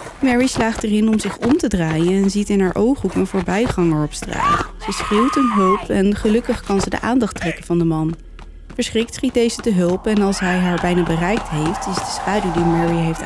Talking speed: 220 wpm